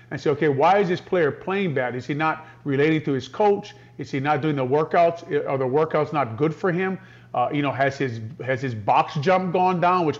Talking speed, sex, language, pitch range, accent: 240 wpm, male, English, 150-185 Hz, American